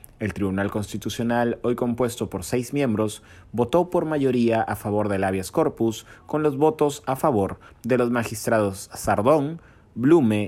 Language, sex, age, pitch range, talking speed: Spanish, male, 30-49, 100-125 Hz, 150 wpm